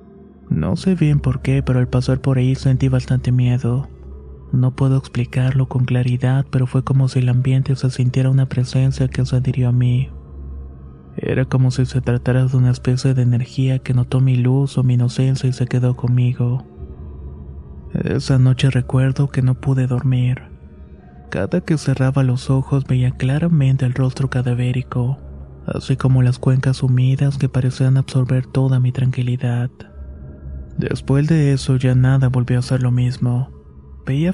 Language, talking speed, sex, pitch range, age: Spanish, 165 wpm, male, 125-130 Hz, 20-39